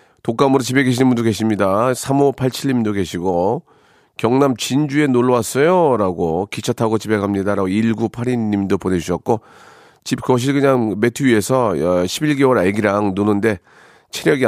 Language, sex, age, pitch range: Korean, male, 40-59, 105-140 Hz